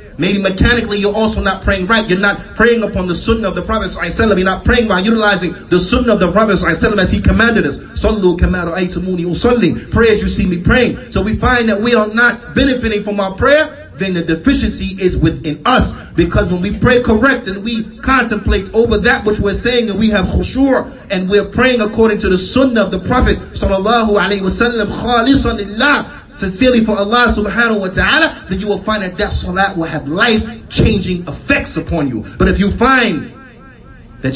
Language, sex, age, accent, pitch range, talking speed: English, male, 30-49, American, 145-215 Hz, 195 wpm